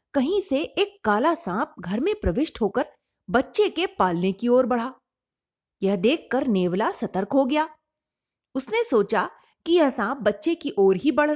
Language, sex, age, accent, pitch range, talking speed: Hindi, female, 30-49, native, 215-315 Hz, 165 wpm